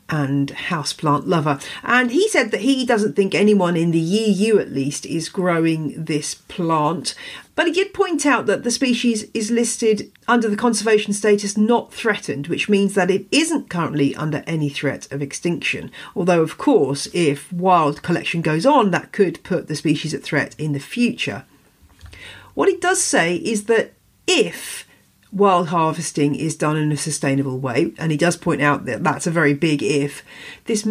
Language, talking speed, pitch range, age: English, 180 wpm, 150-215 Hz, 40-59